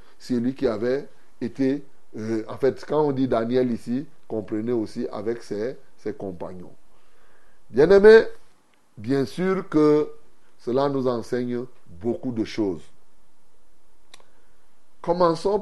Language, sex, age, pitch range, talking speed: French, male, 30-49, 115-145 Hz, 115 wpm